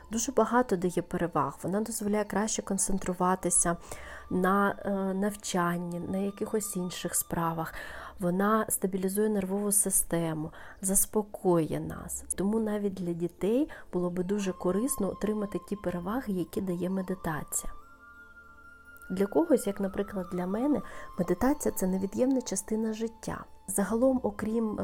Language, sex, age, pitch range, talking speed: Ukrainian, female, 30-49, 185-215 Hz, 115 wpm